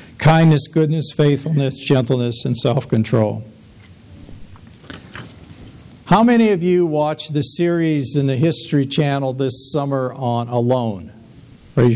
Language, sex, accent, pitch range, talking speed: English, male, American, 115-150 Hz, 110 wpm